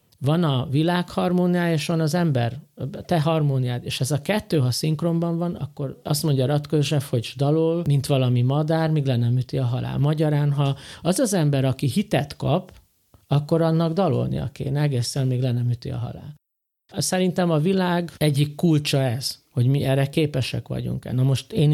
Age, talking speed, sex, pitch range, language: 50-69, 170 wpm, male, 130-160 Hz, Hungarian